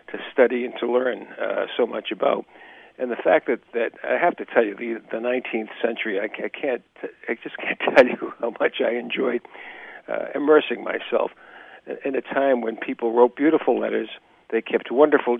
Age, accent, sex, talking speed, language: 50-69, American, male, 185 wpm, English